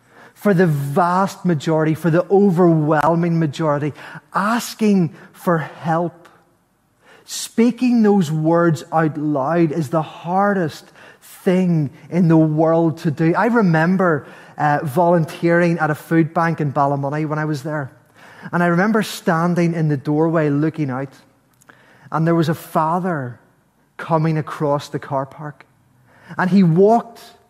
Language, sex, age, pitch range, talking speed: English, male, 20-39, 150-185 Hz, 135 wpm